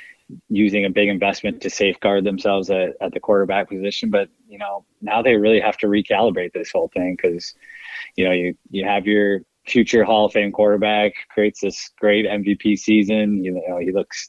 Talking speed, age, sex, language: 190 wpm, 20-39, male, English